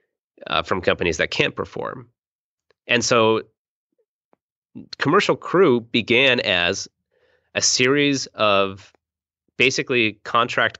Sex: male